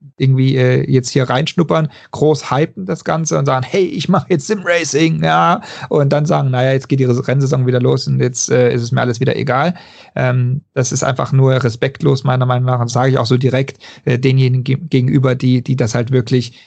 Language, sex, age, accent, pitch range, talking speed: German, male, 40-59, German, 125-145 Hz, 210 wpm